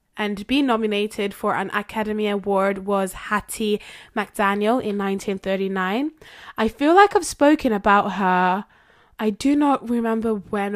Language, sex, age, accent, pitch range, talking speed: English, female, 10-29, British, 195-230 Hz, 135 wpm